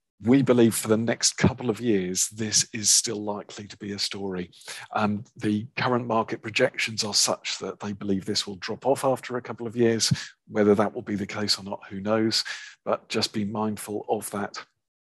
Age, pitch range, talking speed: 50-69, 105-120 Hz, 200 wpm